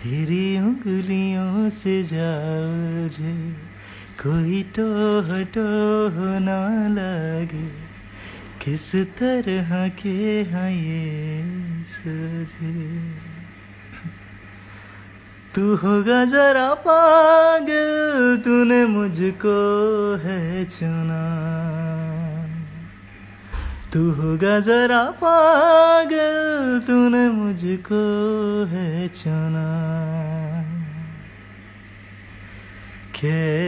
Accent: Indian